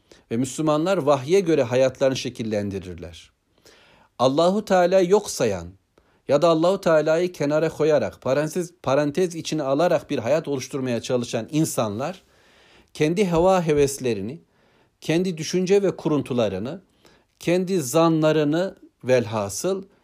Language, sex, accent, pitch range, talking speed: Turkish, male, native, 125-175 Hz, 100 wpm